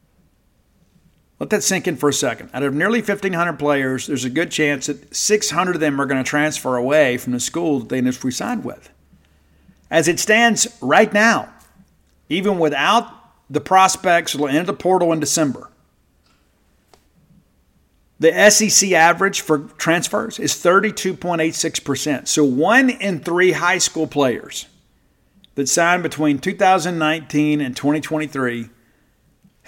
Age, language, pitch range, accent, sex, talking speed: 50-69, English, 140-180 Hz, American, male, 140 wpm